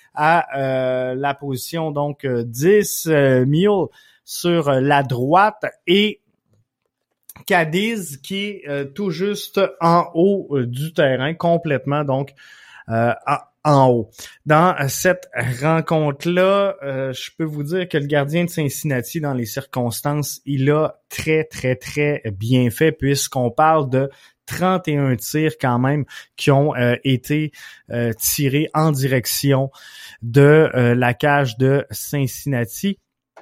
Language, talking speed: French, 135 wpm